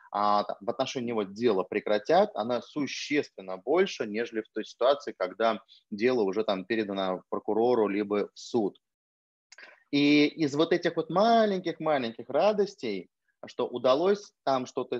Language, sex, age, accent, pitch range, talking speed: Russian, male, 30-49, native, 110-140 Hz, 130 wpm